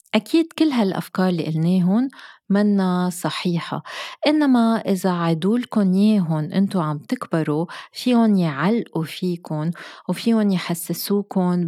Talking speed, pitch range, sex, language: 100 wpm, 160-205 Hz, female, Arabic